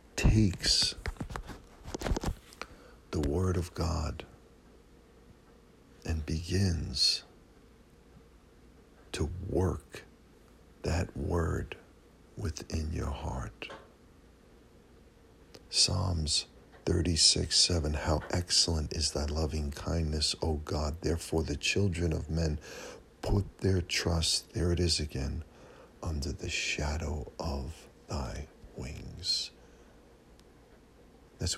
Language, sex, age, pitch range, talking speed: English, male, 60-79, 80-95 Hz, 80 wpm